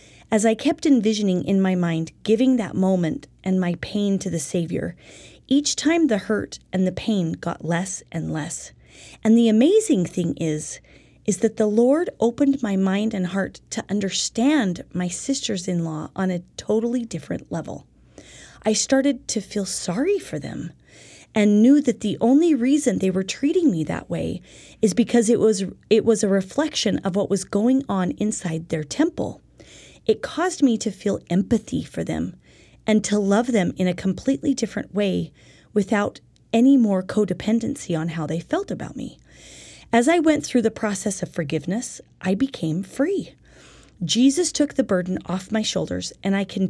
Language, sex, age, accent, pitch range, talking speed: English, female, 30-49, American, 185-250 Hz, 170 wpm